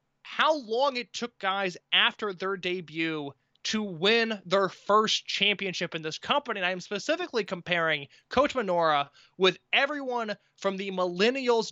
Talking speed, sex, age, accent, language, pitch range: 145 wpm, male, 20-39, American, English, 170-235 Hz